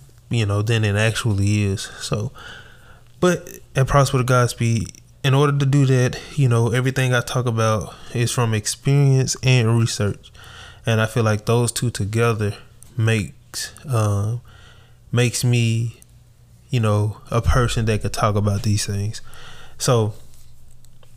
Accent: American